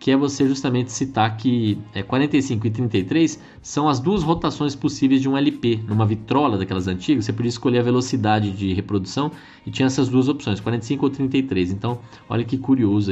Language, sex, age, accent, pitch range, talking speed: Portuguese, male, 20-39, Brazilian, 100-130 Hz, 185 wpm